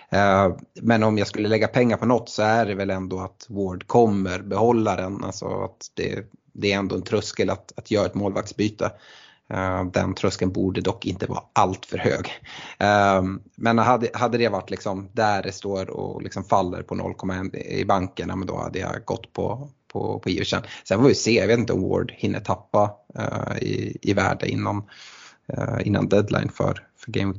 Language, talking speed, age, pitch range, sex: Swedish, 180 wpm, 30-49, 95-115 Hz, male